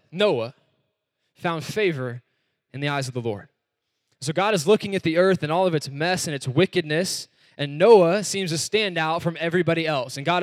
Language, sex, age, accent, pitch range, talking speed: English, male, 20-39, American, 125-165 Hz, 200 wpm